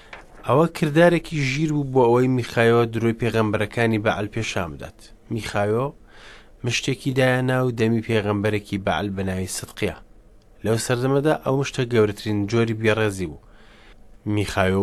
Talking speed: 155 wpm